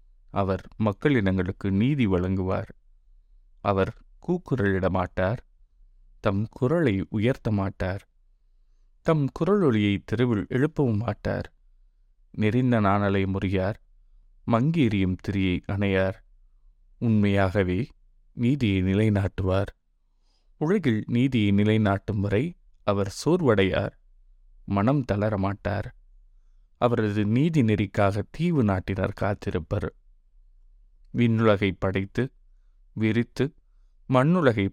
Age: 20-39